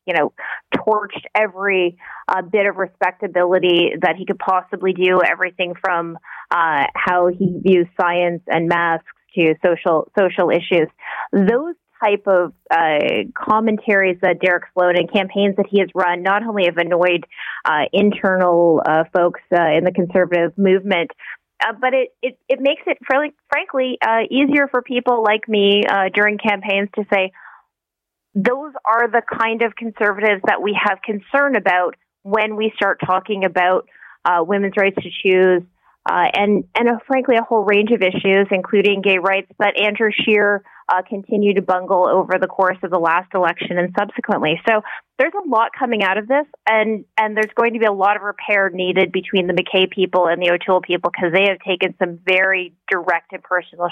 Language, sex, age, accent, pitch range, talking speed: English, female, 30-49, American, 180-215 Hz, 175 wpm